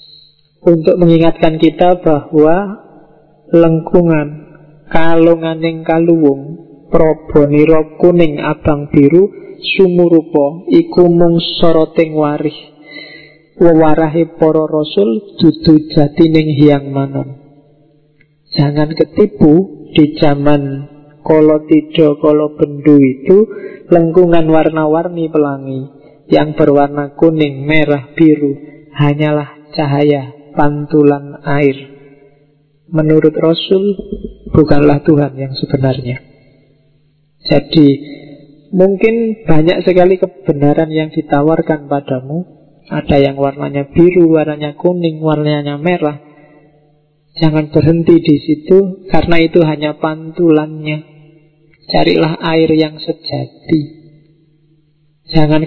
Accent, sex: native, male